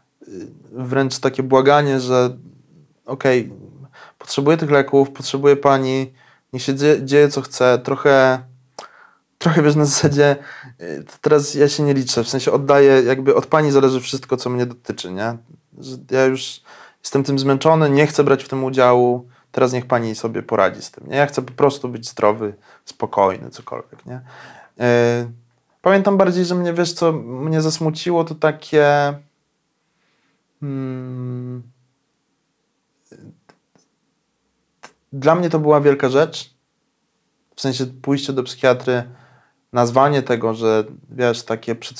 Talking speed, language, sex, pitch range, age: 135 wpm, Polish, male, 125-145 Hz, 20-39